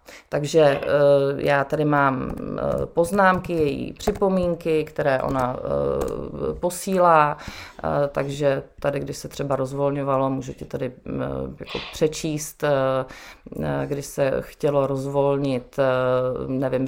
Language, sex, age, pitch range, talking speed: Czech, female, 30-49, 135-175 Hz, 90 wpm